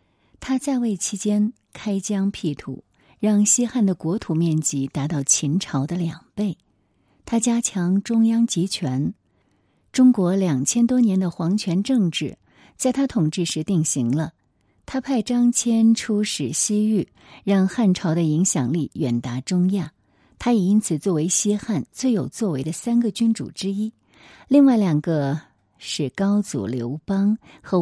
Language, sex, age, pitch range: Chinese, female, 50-69, 155-225 Hz